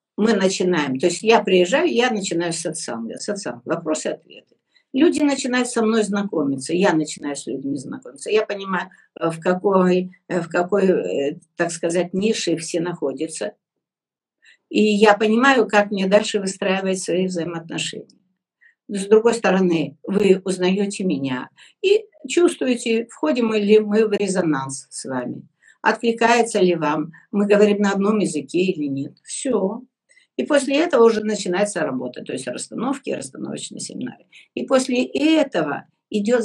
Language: Russian